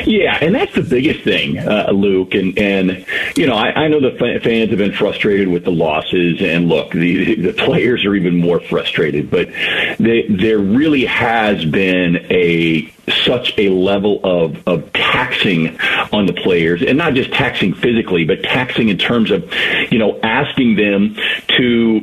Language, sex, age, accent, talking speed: English, male, 40-59, American, 170 wpm